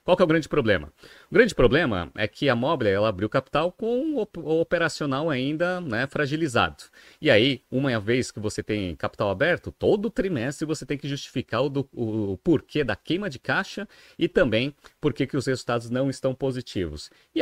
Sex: male